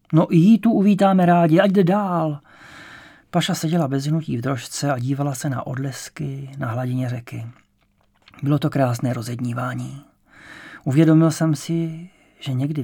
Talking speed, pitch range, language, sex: 145 wpm, 125-150 Hz, English, male